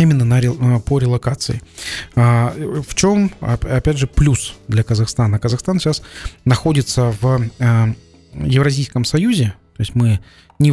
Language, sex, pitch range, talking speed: Russian, male, 110-135 Hz, 120 wpm